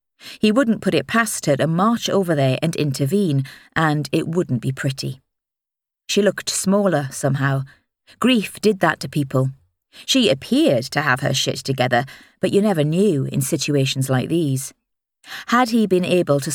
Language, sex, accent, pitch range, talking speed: English, female, British, 135-185 Hz, 165 wpm